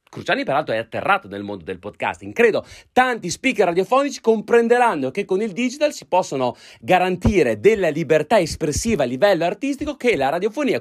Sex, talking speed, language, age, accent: male, 160 wpm, Italian, 30-49, native